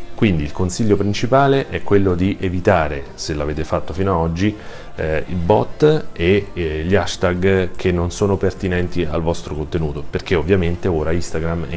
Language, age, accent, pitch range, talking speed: Italian, 40-59, native, 80-100 Hz, 170 wpm